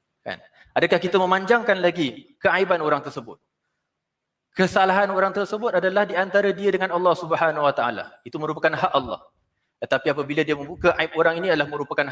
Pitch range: 120-160 Hz